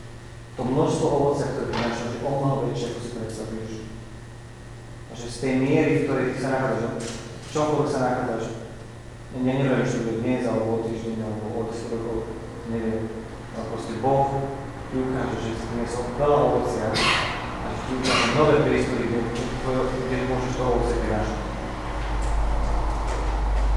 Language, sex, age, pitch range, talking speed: Czech, male, 30-49, 110-130 Hz, 120 wpm